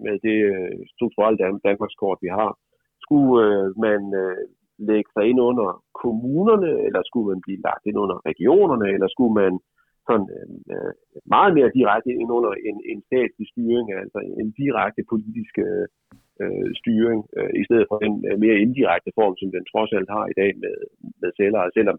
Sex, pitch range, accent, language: male, 105-140 Hz, native, Danish